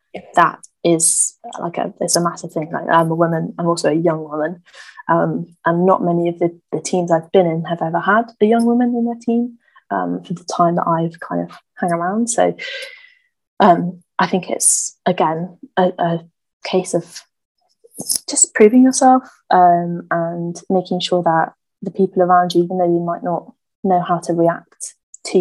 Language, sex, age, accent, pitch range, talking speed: English, female, 20-39, British, 165-185 Hz, 185 wpm